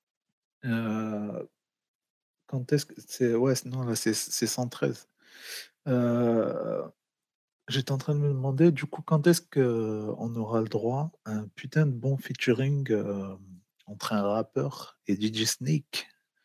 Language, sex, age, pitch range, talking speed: French, male, 40-59, 105-125 Hz, 145 wpm